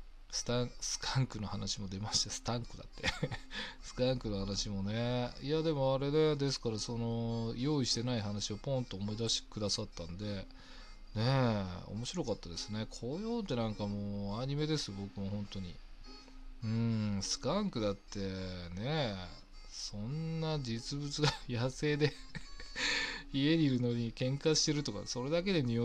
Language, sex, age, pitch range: Japanese, male, 20-39, 100-145 Hz